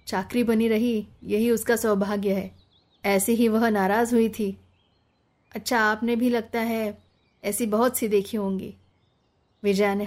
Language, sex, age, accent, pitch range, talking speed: Hindi, female, 20-39, native, 195-230 Hz, 150 wpm